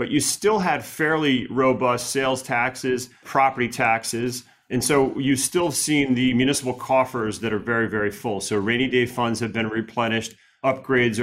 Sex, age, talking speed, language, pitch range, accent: male, 40-59, 165 wpm, English, 105-125 Hz, American